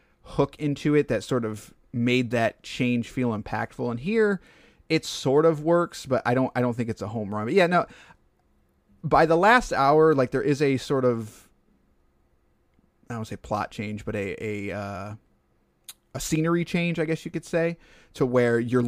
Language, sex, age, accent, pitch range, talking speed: English, male, 30-49, American, 110-140 Hz, 195 wpm